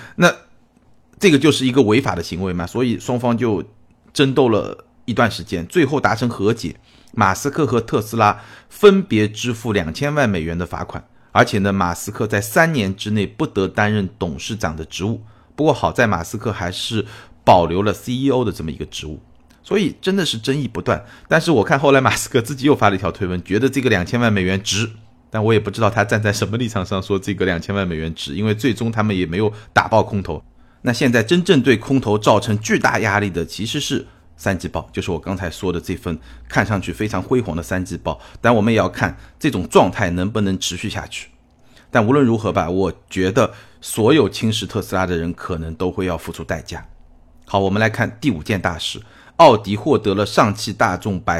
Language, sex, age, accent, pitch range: Chinese, male, 30-49, native, 90-115 Hz